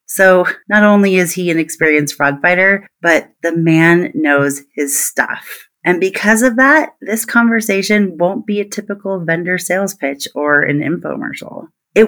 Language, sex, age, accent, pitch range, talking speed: English, female, 30-49, American, 160-230 Hz, 160 wpm